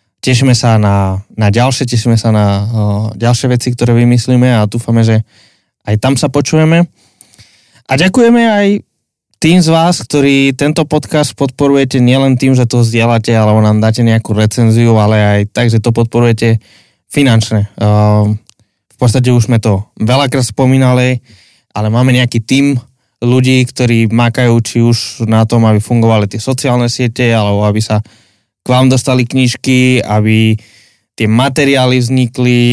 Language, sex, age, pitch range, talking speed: Slovak, male, 20-39, 110-125 Hz, 150 wpm